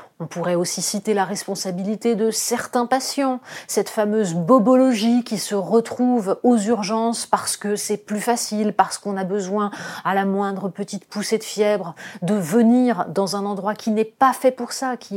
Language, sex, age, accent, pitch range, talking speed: French, female, 30-49, French, 195-245 Hz, 180 wpm